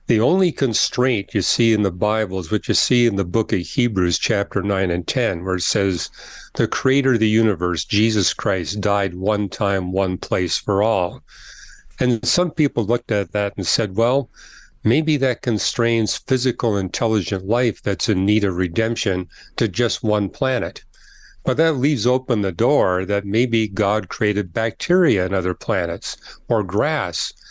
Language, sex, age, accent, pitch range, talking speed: English, male, 50-69, American, 100-120 Hz, 170 wpm